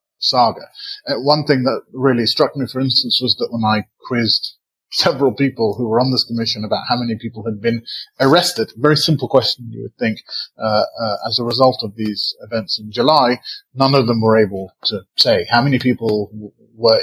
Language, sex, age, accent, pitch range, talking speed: English, male, 30-49, British, 110-135 Hz, 200 wpm